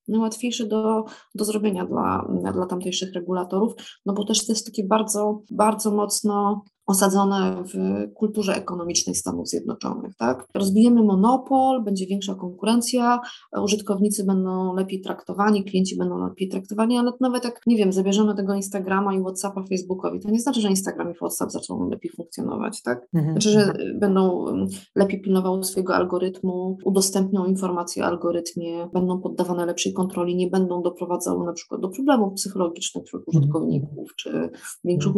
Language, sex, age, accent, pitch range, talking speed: Polish, female, 20-39, native, 180-215 Hz, 145 wpm